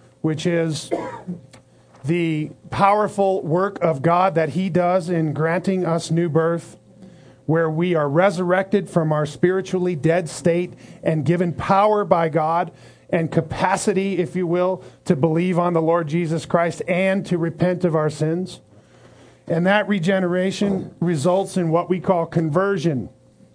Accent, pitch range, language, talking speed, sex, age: American, 155-190 Hz, English, 145 wpm, male, 40-59